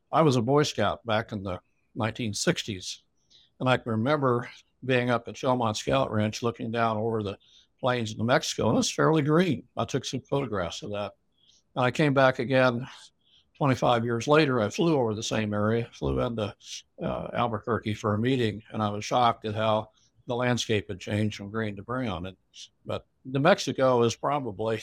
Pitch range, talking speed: 105-130 Hz, 190 wpm